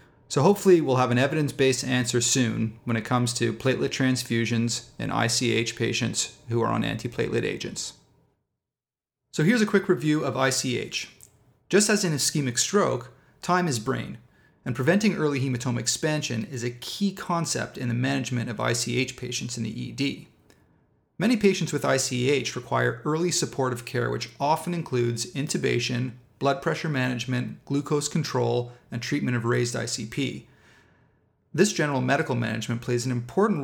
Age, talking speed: 30-49, 150 wpm